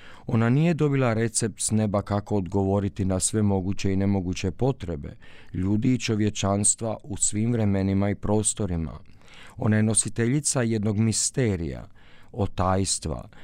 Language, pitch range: Croatian, 100-120 Hz